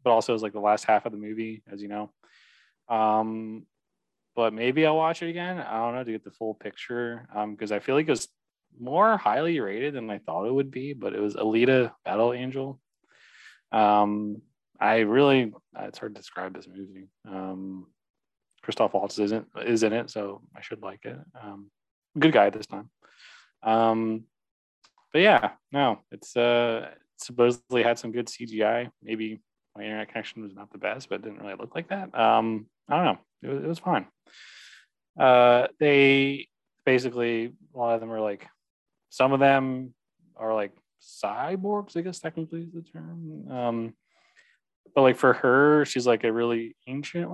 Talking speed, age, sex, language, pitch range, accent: 185 wpm, 20-39, male, English, 110-135 Hz, American